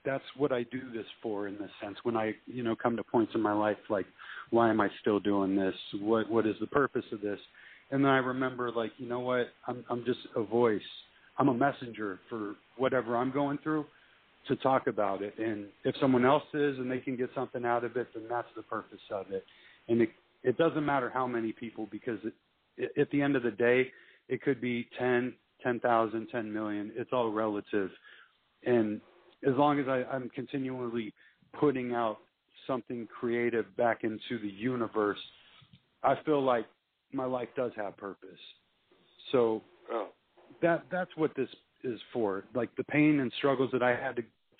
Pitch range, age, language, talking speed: 110-130 Hz, 40-59, English, 195 wpm